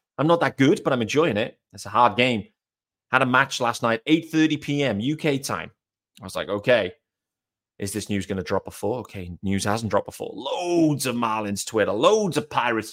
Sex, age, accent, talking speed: male, 30-49, British, 205 wpm